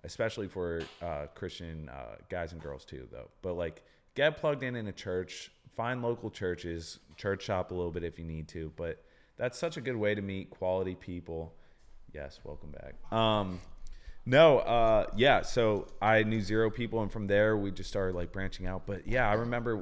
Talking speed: 195 wpm